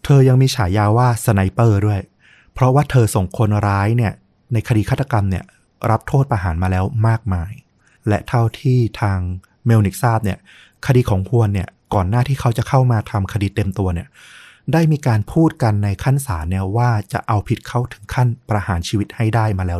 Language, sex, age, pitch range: Thai, male, 20-39, 100-125 Hz